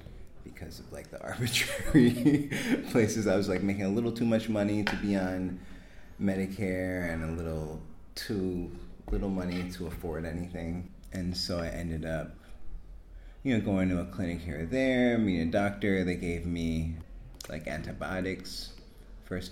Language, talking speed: English, 155 wpm